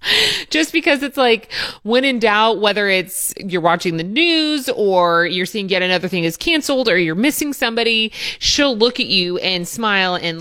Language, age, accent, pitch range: English, 30-49, American, 170-210 Hz